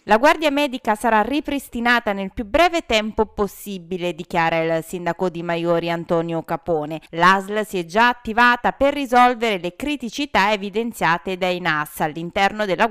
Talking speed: 145 wpm